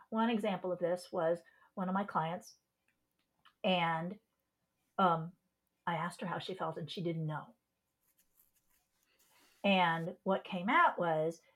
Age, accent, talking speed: 50-69, American, 135 wpm